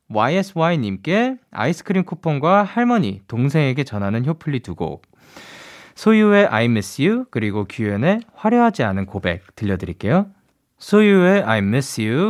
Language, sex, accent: Korean, male, native